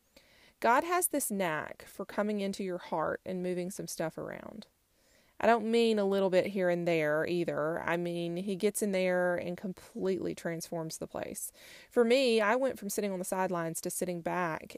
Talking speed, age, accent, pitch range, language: 190 wpm, 30-49, American, 170-195 Hz, English